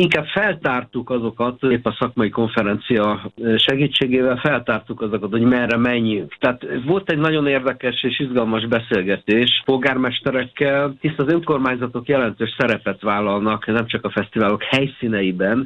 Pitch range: 110-135 Hz